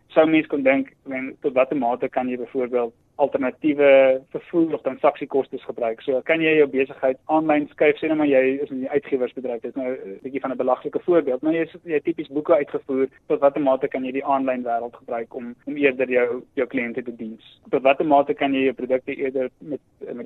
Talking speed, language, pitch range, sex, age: 205 wpm, English, 125-150 Hz, male, 20-39